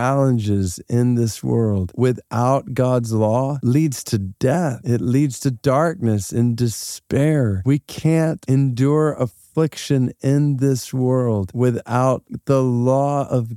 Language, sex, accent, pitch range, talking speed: English, male, American, 120-150 Hz, 125 wpm